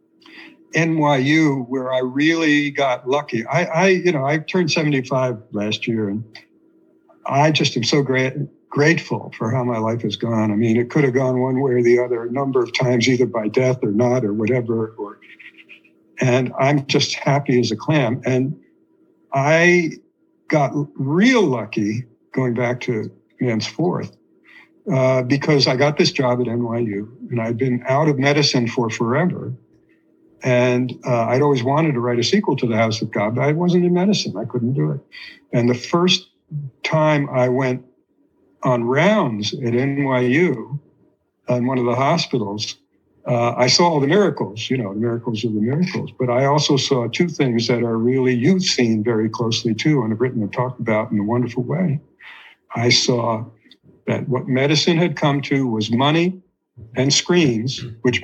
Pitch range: 120-150 Hz